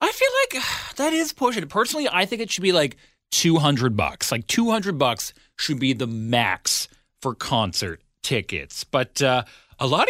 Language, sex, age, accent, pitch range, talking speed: English, male, 30-49, American, 115-190 Hz, 170 wpm